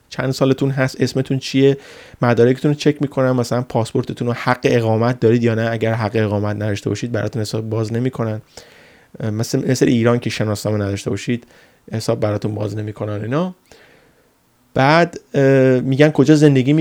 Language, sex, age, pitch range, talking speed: Persian, male, 30-49, 110-135 Hz, 155 wpm